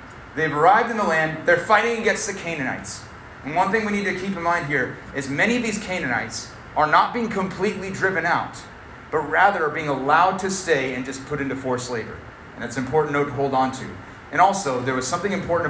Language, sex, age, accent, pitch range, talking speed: English, male, 30-49, American, 140-190 Hz, 225 wpm